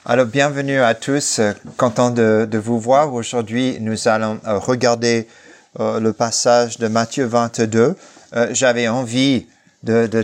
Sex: male